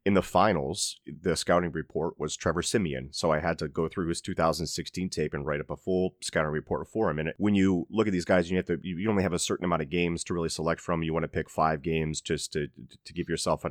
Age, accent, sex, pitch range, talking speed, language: 30-49, American, male, 80-95 Hz, 260 wpm, English